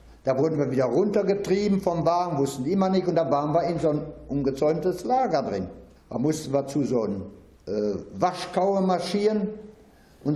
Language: German